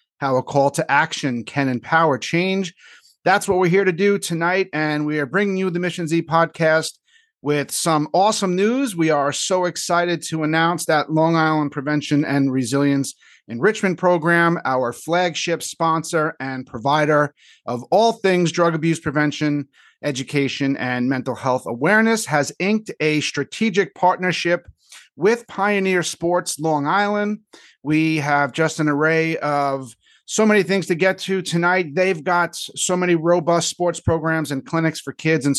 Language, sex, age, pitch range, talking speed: English, male, 40-59, 145-180 Hz, 155 wpm